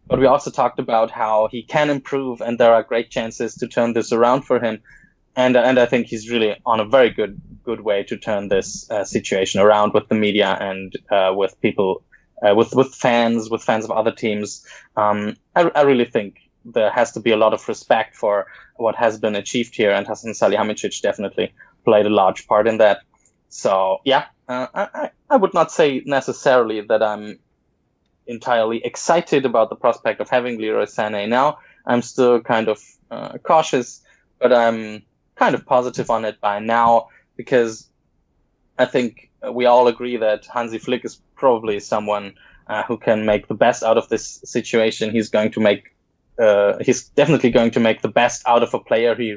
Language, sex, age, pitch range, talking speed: English, male, 10-29, 110-125 Hz, 190 wpm